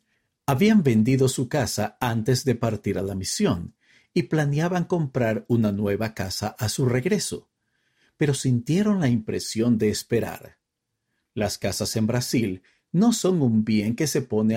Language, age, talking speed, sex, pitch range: Spanish, 50-69, 150 wpm, male, 110-140 Hz